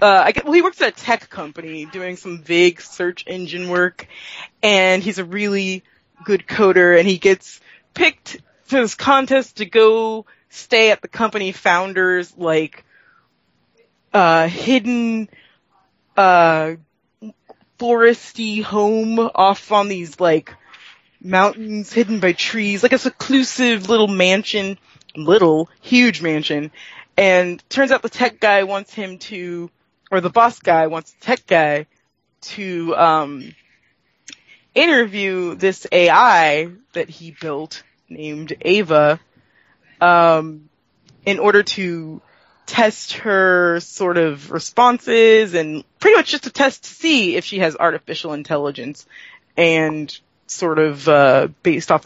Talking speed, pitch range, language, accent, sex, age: 130 wpm, 165-220 Hz, English, American, female, 20-39